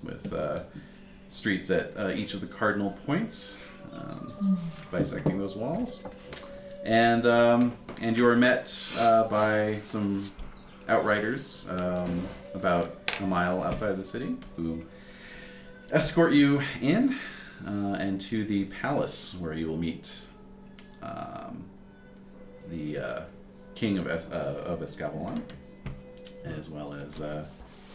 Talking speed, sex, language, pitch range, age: 125 wpm, male, English, 85-125 Hz, 30-49